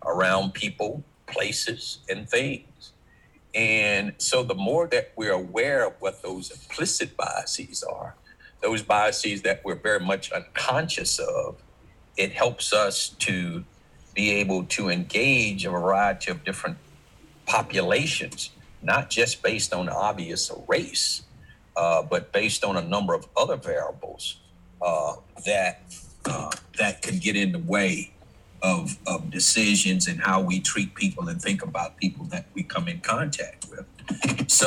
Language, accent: English, American